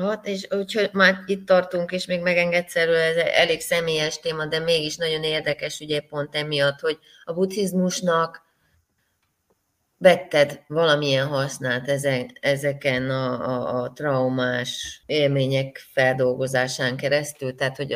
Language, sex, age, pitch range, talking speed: Hungarian, female, 30-49, 130-160 Hz, 110 wpm